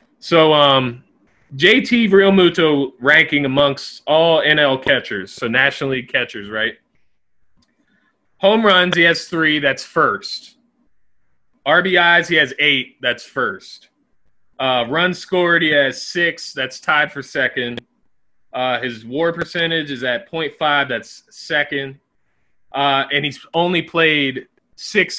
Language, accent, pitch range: English, American, 130-175 Hz